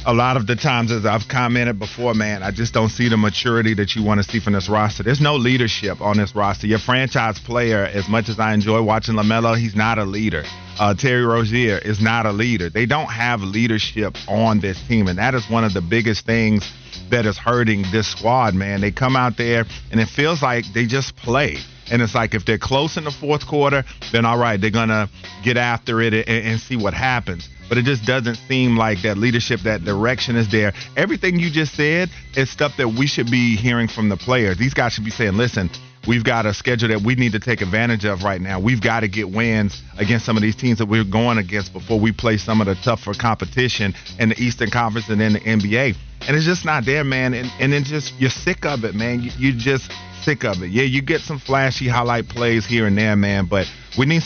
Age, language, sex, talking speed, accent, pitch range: 40-59, English, male, 240 wpm, American, 105-125 Hz